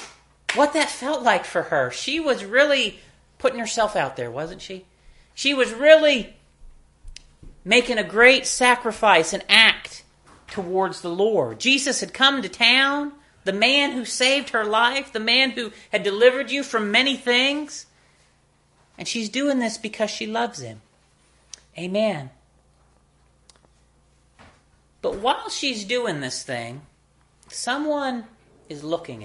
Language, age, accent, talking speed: English, 40-59, American, 135 wpm